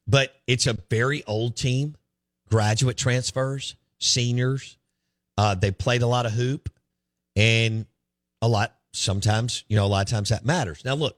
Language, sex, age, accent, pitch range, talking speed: English, male, 50-69, American, 85-115 Hz, 160 wpm